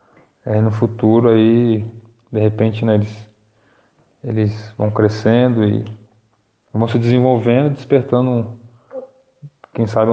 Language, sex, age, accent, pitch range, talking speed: Portuguese, male, 20-39, Brazilian, 110-120 Hz, 100 wpm